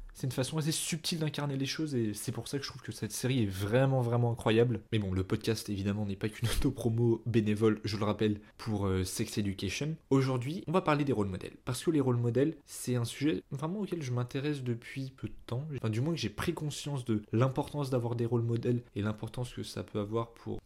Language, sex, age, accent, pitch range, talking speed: French, male, 20-39, French, 105-130 Hz, 240 wpm